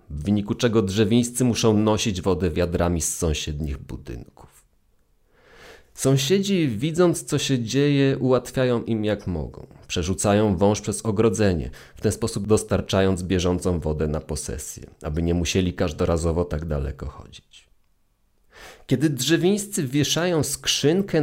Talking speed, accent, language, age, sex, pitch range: 120 wpm, native, Polish, 30-49, male, 85-125 Hz